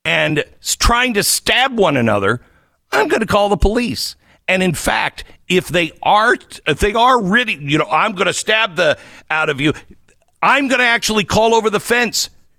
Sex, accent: male, American